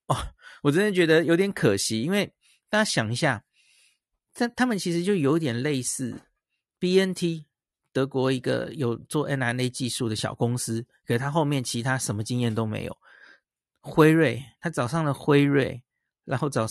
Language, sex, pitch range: Chinese, male, 125-175 Hz